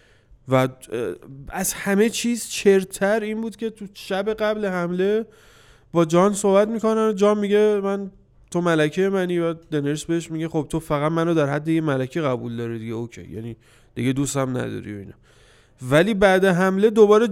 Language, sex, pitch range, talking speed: Persian, male, 130-180 Hz, 165 wpm